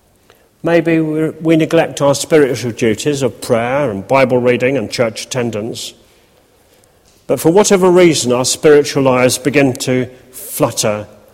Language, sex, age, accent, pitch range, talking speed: English, male, 40-59, British, 115-145 Hz, 125 wpm